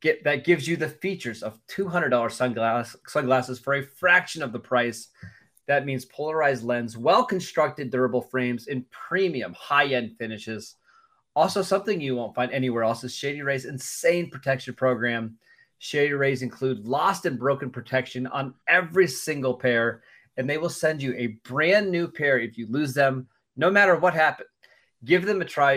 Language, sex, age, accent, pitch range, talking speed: English, male, 30-49, American, 125-155 Hz, 165 wpm